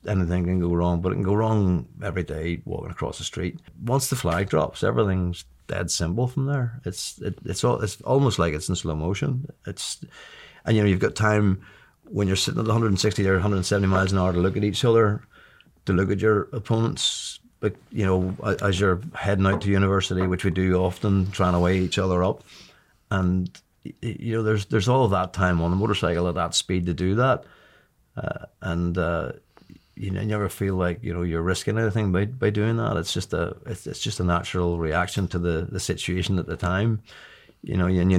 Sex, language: male, English